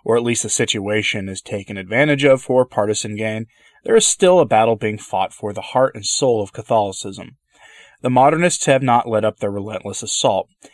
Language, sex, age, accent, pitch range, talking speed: English, male, 30-49, American, 110-150 Hz, 195 wpm